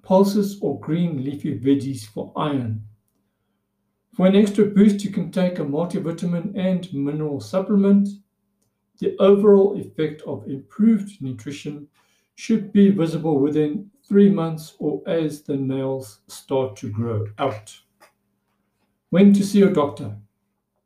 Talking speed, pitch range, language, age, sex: 125 wpm, 140-200 Hz, English, 60-79, male